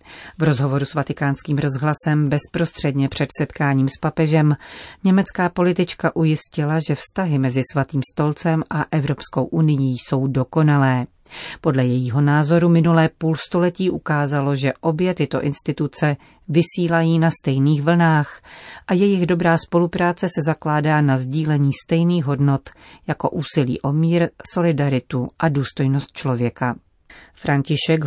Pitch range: 140-165 Hz